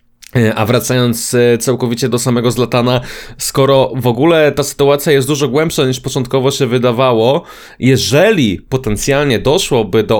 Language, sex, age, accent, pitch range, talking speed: Polish, male, 20-39, native, 115-140 Hz, 130 wpm